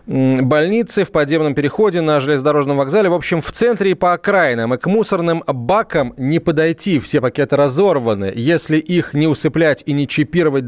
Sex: male